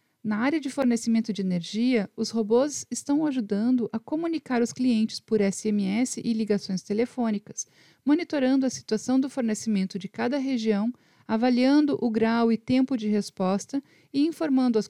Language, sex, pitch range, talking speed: Portuguese, female, 210-260 Hz, 150 wpm